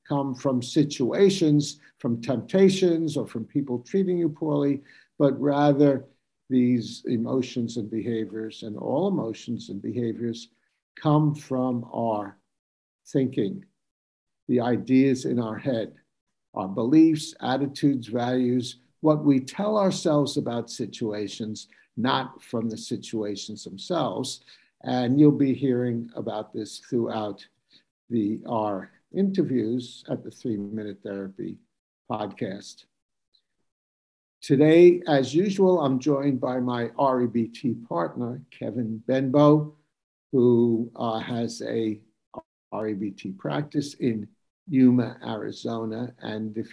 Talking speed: 110 wpm